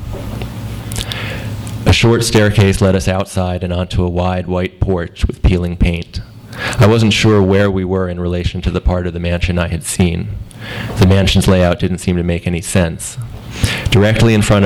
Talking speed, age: 180 wpm, 30-49